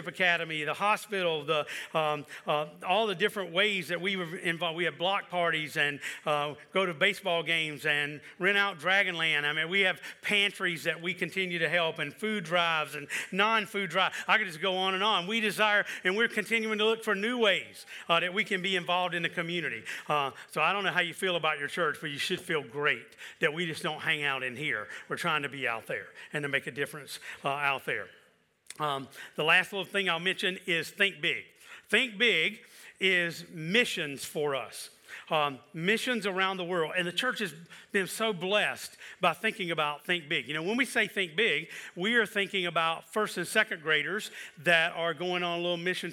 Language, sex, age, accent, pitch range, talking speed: English, male, 50-69, American, 170-210 Hz, 210 wpm